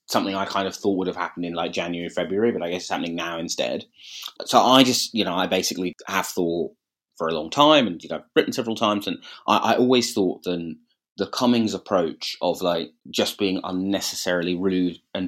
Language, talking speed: English, 215 wpm